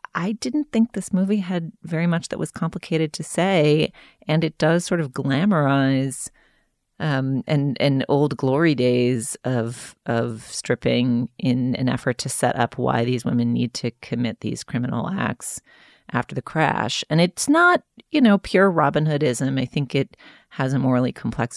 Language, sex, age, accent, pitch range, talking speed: English, female, 30-49, American, 125-165 Hz, 170 wpm